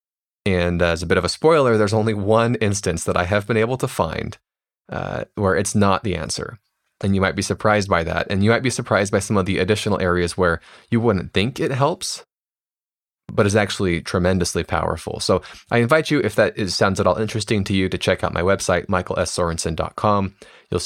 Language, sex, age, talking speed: English, male, 20-39, 205 wpm